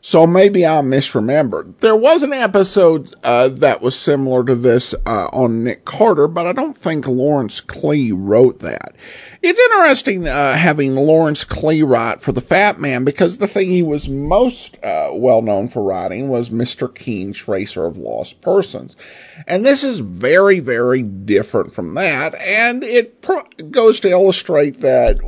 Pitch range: 115-170 Hz